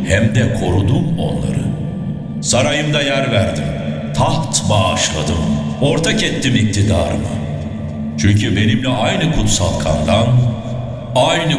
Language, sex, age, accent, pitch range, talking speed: Turkish, male, 60-79, native, 90-125 Hz, 95 wpm